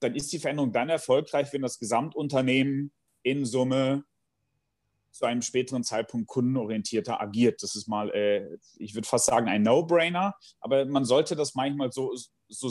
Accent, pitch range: German, 125-160 Hz